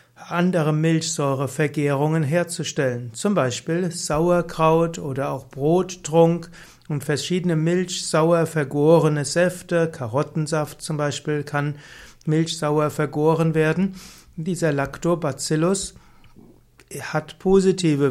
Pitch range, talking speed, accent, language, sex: 140-175 Hz, 85 wpm, German, German, male